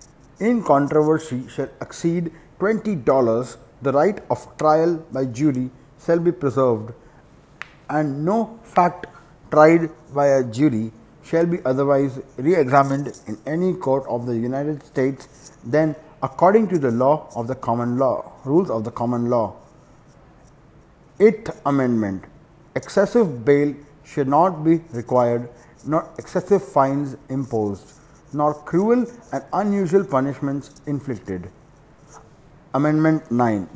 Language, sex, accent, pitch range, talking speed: English, male, Indian, 125-155 Hz, 120 wpm